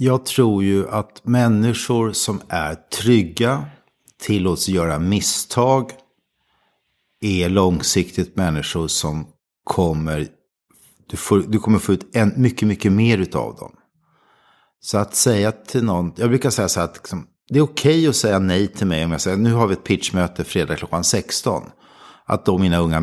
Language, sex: Swedish, male